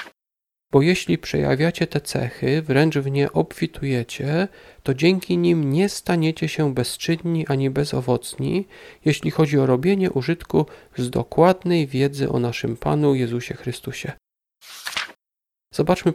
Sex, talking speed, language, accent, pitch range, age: male, 120 wpm, Polish, native, 135-165 Hz, 40-59